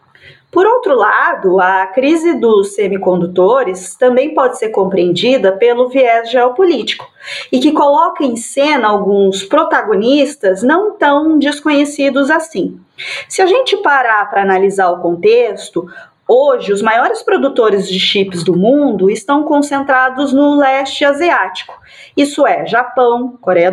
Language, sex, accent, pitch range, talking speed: Portuguese, female, Brazilian, 210-305 Hz, 125 wpm